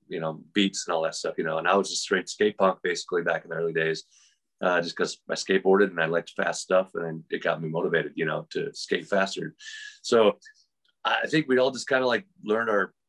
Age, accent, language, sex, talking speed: 30-49, American, English, male, 245 wpm